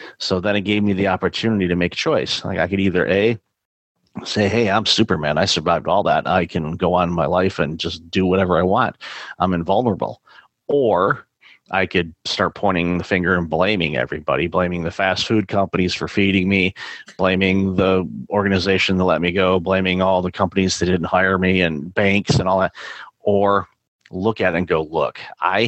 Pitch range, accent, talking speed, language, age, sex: 90-100 Hz, American, 200 wpm, English, 40-59, male